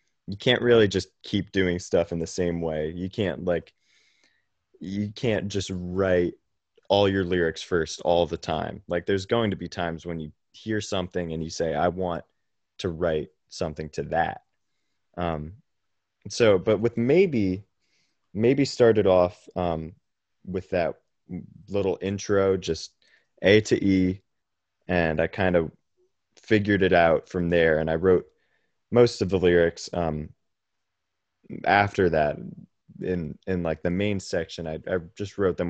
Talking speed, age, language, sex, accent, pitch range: 155 wpm, 20-39, English, male, American, 85-105 Hz